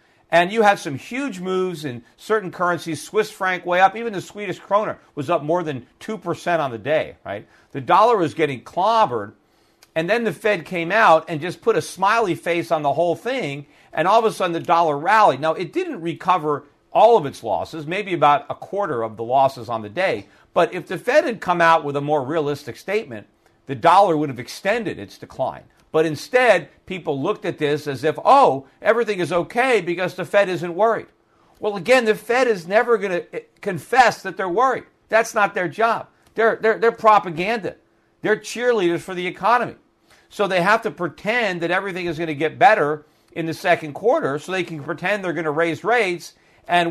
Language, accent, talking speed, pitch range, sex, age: English, American, 205 wpm, 155-210 Hz, male, 50-69